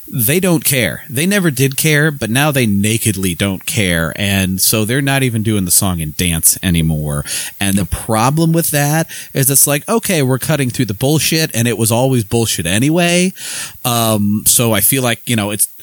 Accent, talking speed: American, 195 wpm